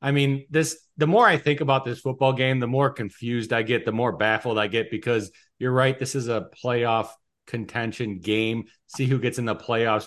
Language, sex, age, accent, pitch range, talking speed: English, male, 40-59, American, 125-155 Hz, 215 wpm